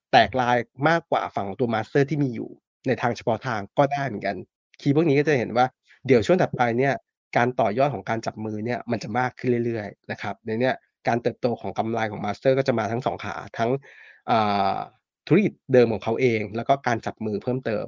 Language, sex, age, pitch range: Thai, male, 20-39, 115-140 Hz